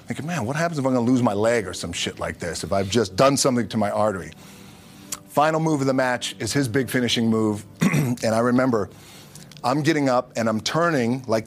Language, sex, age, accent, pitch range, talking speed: English, male, 40-59, American, 95-130 Hz, 235 wpm